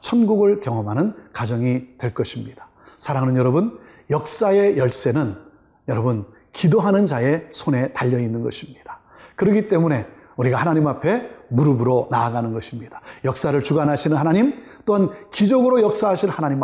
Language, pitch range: Korean, 125-195 Hz